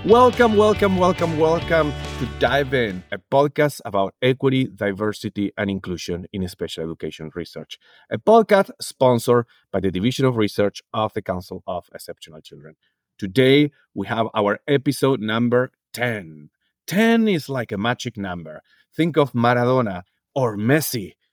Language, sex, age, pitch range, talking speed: English, male, 30-49, 100-145 Hz, 140 wpm